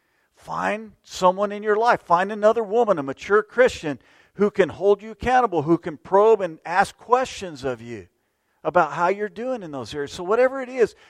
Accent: American